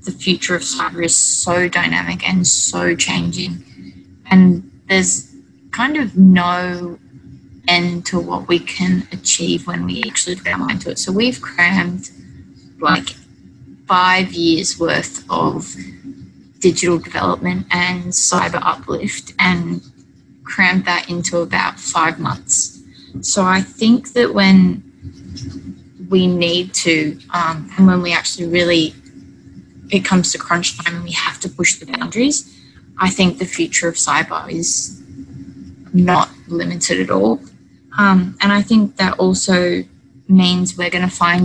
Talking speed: 140 wpm